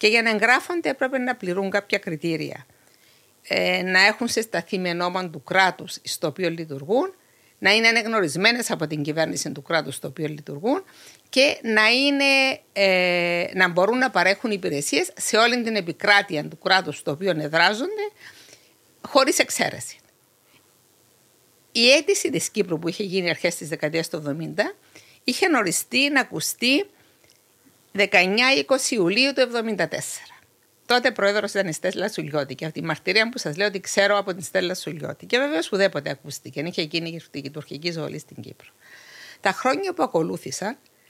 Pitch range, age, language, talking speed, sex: 160-230 Hz, 50-69, Greek, 155 wpm, female